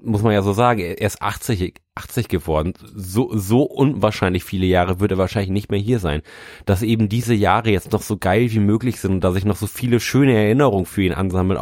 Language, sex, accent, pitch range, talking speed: German, male, German, 95-115 Hz, 225 wpm